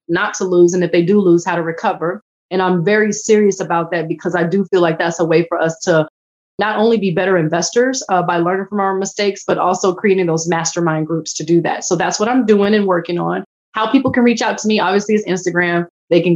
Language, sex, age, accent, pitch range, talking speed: English, female, 20-39, American, 180-215 Hz, 250 wpm